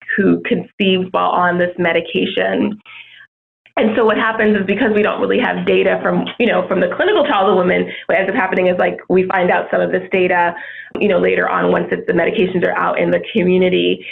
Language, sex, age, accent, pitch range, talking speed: English, female, 20-39, American, 175-195 Hz, 220 wpm